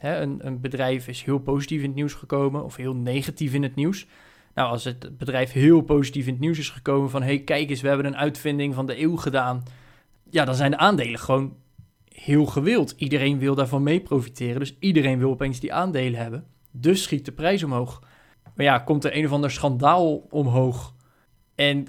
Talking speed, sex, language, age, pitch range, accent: 210 wpm, male, Dutch, 20-39, 135-155 Hz, Dutch